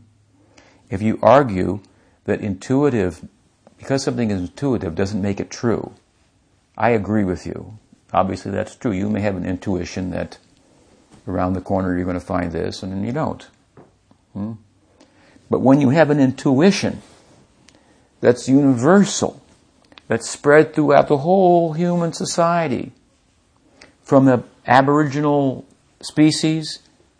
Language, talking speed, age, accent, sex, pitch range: English, 125 wpm, 60-79, American, male, 100-140 Hz